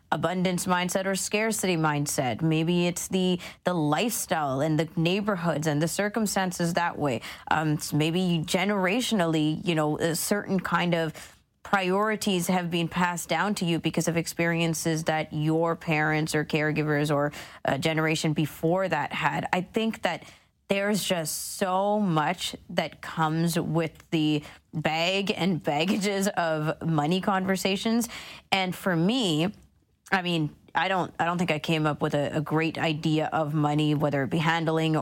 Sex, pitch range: female, 155-185 Hz